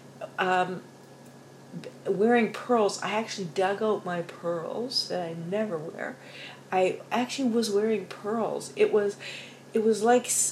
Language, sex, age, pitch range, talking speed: English, female, 50-69, 175-215 Hz, 130 wpm